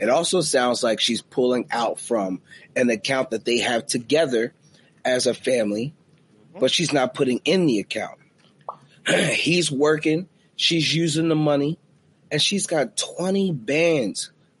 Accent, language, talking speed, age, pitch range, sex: American, English, 145 wpm, 30-49, 140-170 Hz, male